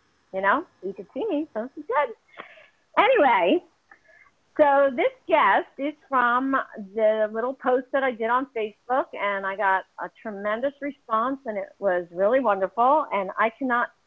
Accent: American